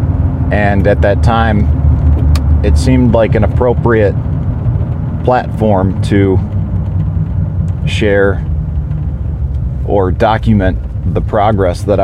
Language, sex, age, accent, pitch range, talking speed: English, male, 40-59, American, 80-105 Hz, 85 wpm